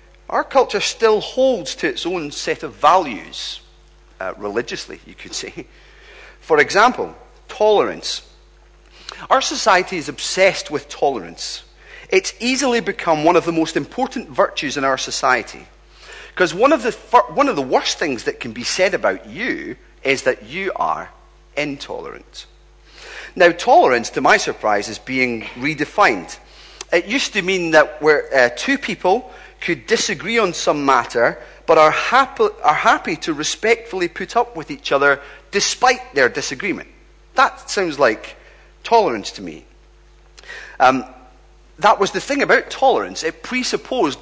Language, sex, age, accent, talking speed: English, male, 40-59, British, 145 wpm